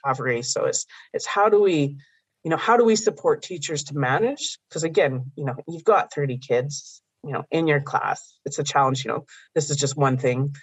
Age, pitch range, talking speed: 30-49, 140-165 Hz, 210 wpm